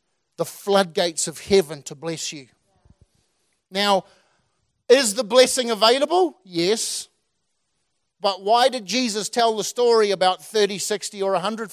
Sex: male